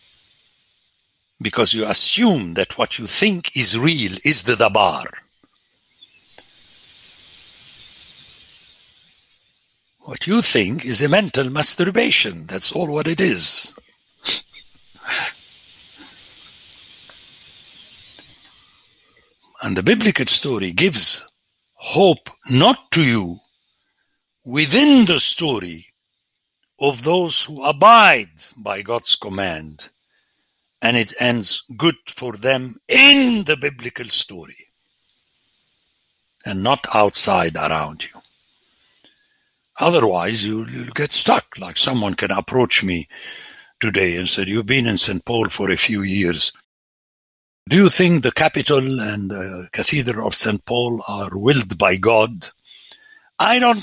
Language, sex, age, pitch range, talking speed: English, male, 60-79, 110-175 Hz, 110 wpm